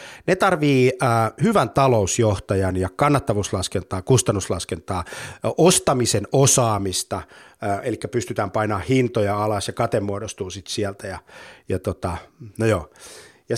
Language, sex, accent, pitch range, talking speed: Finnish, male, native, 100-135 Hz, 120 wpm